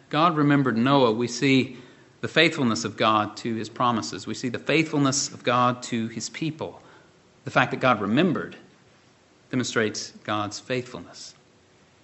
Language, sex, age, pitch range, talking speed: English, male, 40-59, 130-175 Hz, 145 wpm